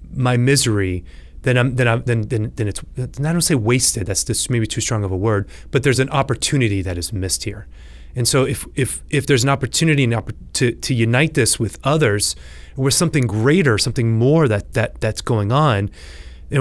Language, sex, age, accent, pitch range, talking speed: English, male, 30-49, American, 85-125 Hz, 205 wpm